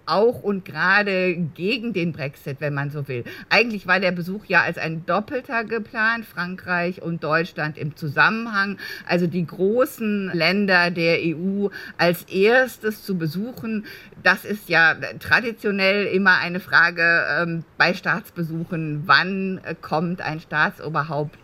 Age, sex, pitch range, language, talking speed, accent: 50-69, female, 170-205 Hz, German, 135 wpm, German